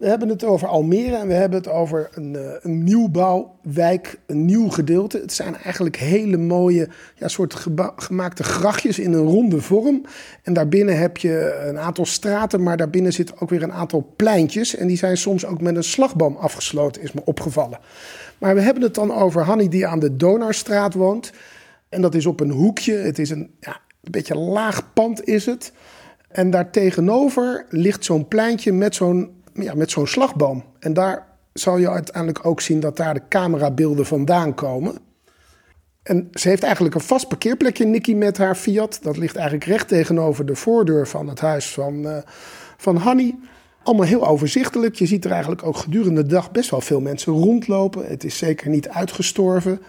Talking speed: 190 wpm